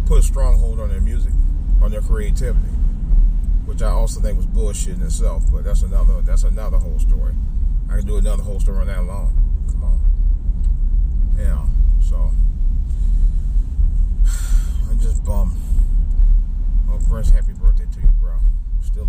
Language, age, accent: English, 30-49, American